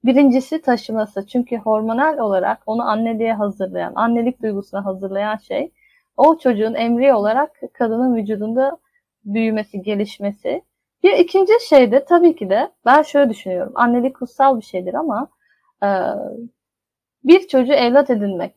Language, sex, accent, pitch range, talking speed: Turkish, female, native, 210-275 Hz, 130 wpm